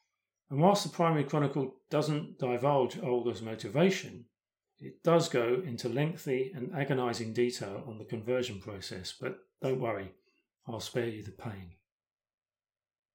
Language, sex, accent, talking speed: English, male, British, 130 wpm